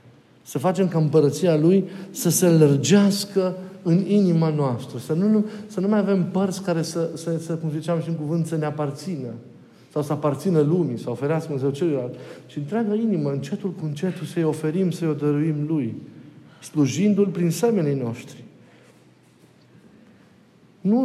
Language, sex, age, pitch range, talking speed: Romanian, male, 50-69, 135-175 Hz, 150 wpm